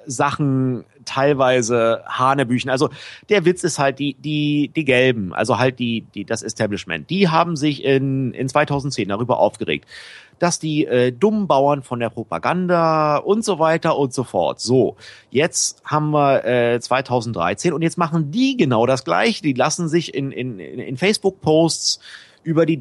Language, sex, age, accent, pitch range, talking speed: German, male, 30-49, German, 125-170 Hz, 165 wpm